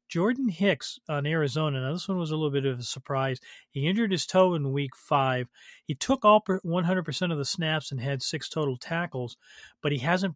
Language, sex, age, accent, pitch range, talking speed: English, male, 40-59, American, 135-165 Hz, 210 wpm